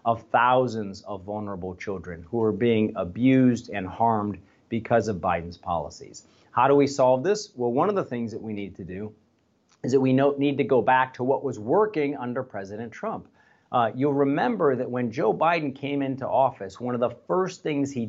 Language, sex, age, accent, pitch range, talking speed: English, male, 40-59, American, 110-135 Hz, 200 wpm